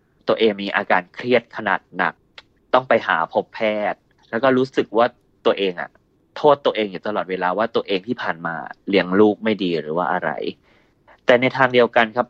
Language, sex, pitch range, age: Thai, male, 105-125 Hz, 30-49